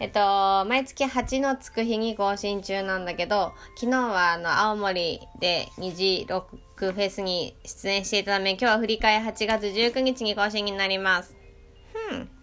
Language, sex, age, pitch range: Japanese, female, 20-39, 175-230 Hz